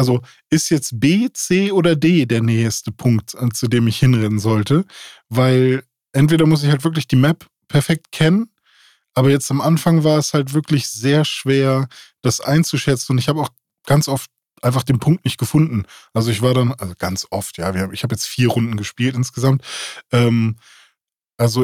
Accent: German